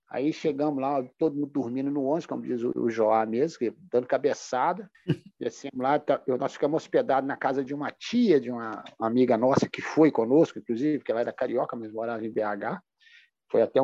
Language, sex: Portuguese, male